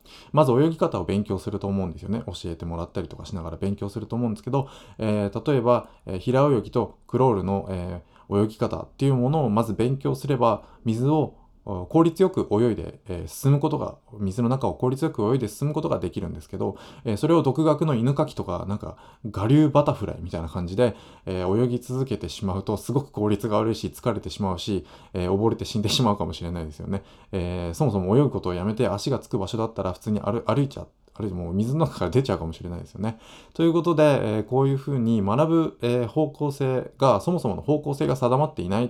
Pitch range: 95-130 Hz